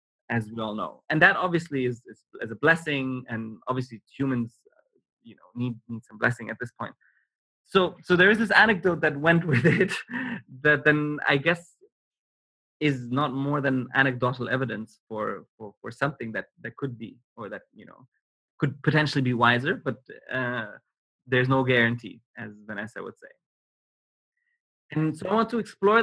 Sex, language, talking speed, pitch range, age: male, English, 175 wpm, 115-140 Hz, 20-39